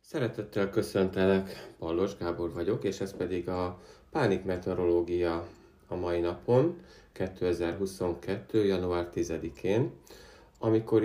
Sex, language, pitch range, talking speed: male, Hungarian, 85-95 Hz, 100 wpm